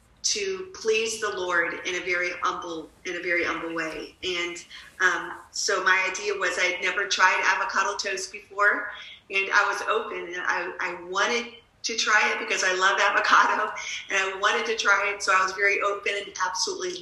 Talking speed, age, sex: 185 wpm, 40-59, female